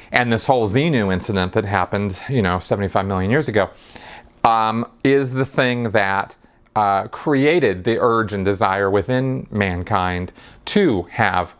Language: English